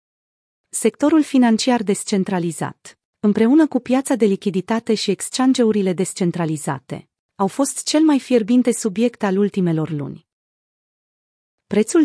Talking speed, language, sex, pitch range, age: 105 wpm, Romanian, female, 185-240 Hz, 30-49